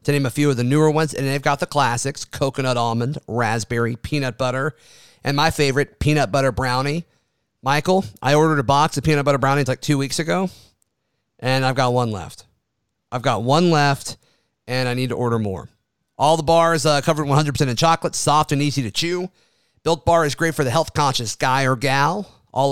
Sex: male